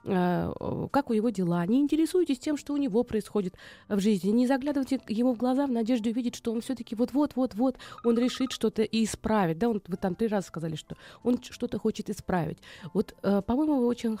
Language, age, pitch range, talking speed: Russian, 20-39, 200-255 Hz, 200 wpm